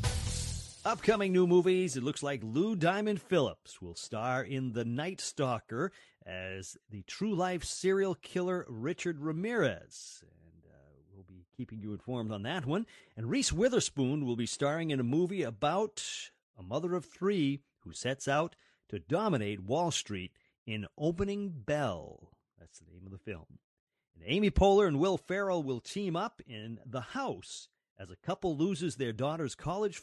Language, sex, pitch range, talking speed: English, male, 115-185 Hz, 160 wpm